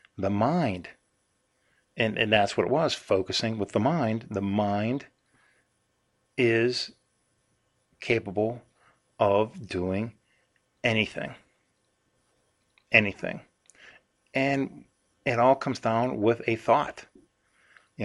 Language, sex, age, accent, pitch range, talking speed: English, male, 50-69, American, 100-115 Hz, 95 wpm